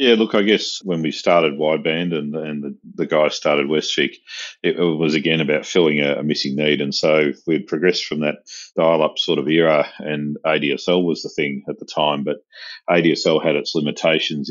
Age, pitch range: 40-59, 75-85 Hz